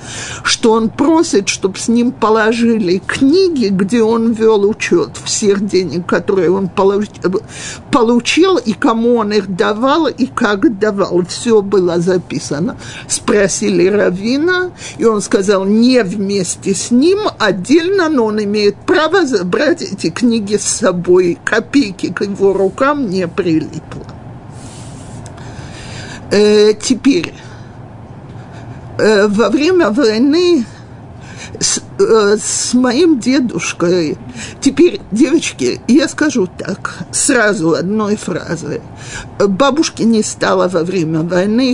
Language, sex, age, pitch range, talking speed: Russian, male, 50-69, 180-250 Hz, 110 wpm